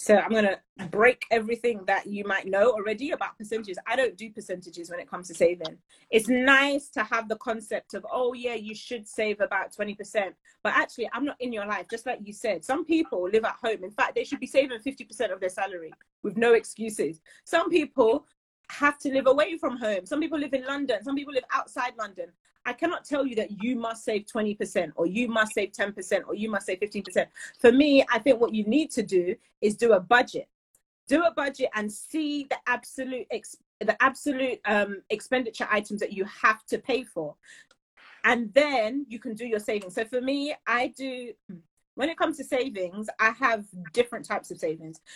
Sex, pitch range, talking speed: female, 205-265 Hz, 210 wpm